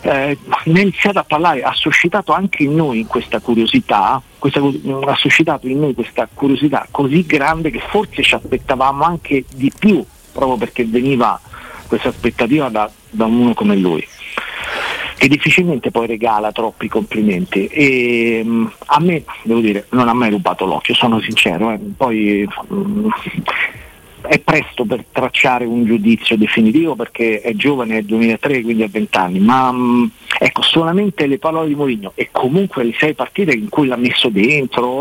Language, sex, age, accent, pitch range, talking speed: Italian, male, 50-69, native, 115-155 Hz, 155 wpm